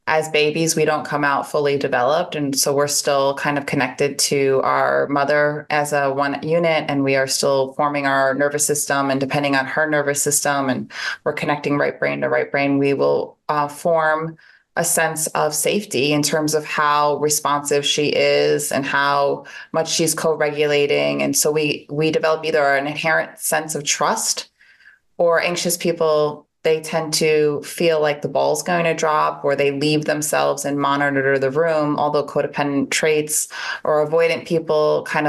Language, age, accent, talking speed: English, 20-39, American, 175 wpm